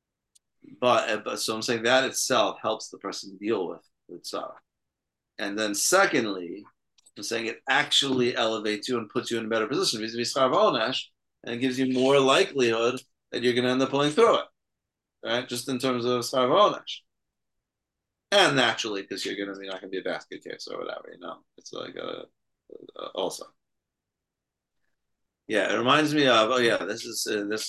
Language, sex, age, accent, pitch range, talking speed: English, male, 30-49, American, 100-145 Hz, 185 wpm